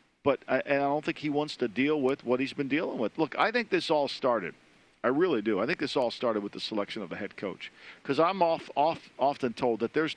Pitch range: 115-155 Hz